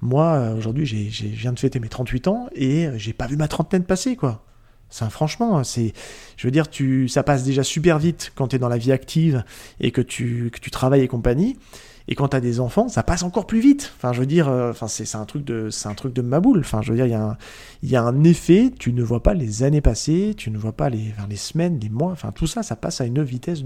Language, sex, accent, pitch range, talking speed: French, male, French, 120-155 Hz, 270 wpm